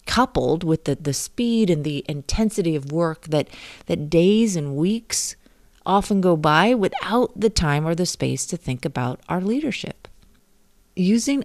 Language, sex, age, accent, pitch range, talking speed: English, female, 40-59, American, 150-225 Hz, 155 wpm